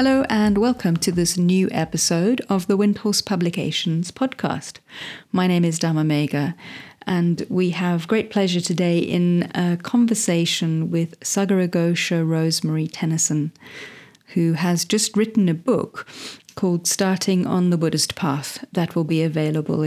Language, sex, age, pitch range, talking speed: English, female, 40-59, 165-200 Hz, 140 wpm